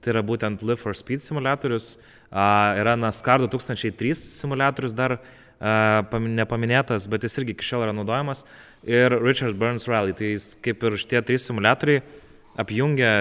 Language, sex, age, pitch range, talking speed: English, male, 20-39, 105-130 Hz, 140 wpm